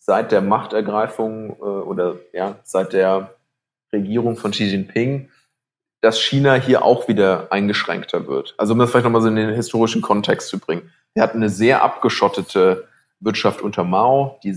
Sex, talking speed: male, 160 wpm